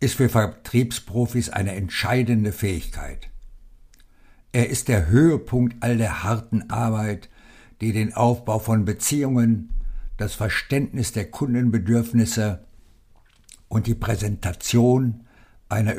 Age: 60-79